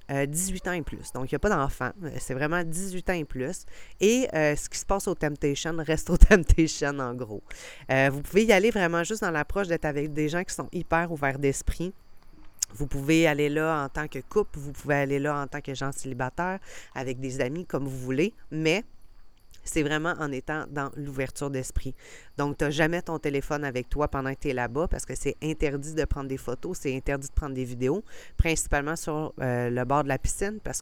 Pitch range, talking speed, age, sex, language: 135-165 Hz, 220 wpm, 30-49, female, French